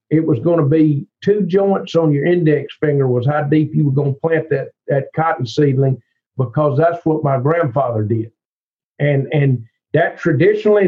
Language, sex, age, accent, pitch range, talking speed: English, male, 50-69, American, 140-175 Hz, 180 wpm